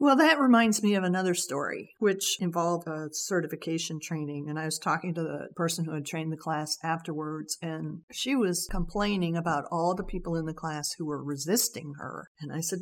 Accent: American